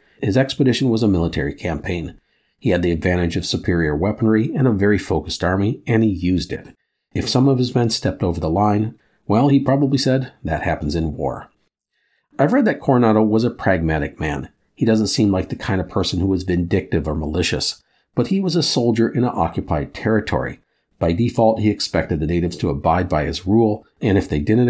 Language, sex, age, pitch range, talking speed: English, male, 50-69, 90-125 Hz, 205 wpm